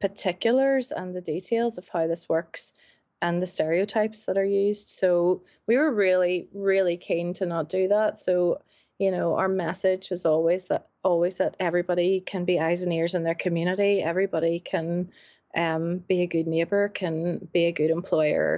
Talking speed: 180 wpm